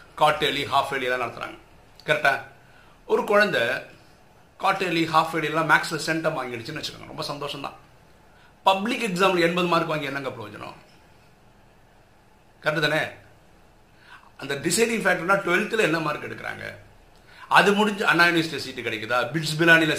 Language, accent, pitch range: Tamil, native, 130-175 Hz